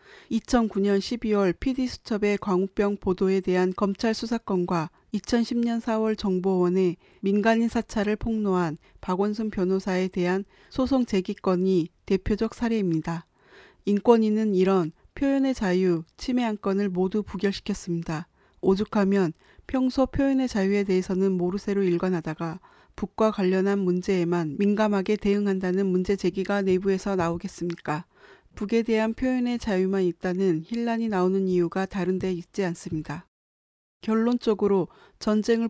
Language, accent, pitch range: Korean, native, 185-215 Hz